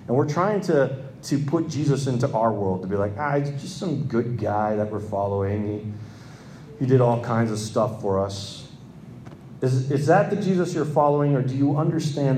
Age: 30-49